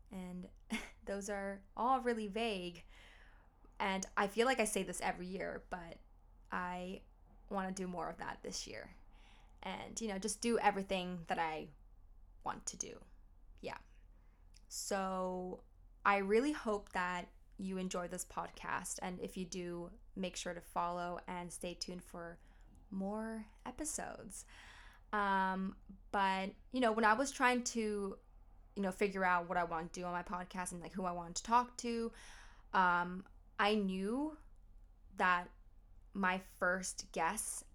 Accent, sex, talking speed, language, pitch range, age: American, female, 155 wpm, English, 175-205 Hz, 10-29